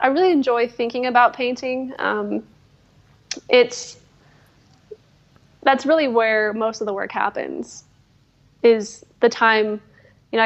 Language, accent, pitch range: English, American, 210-245 Hz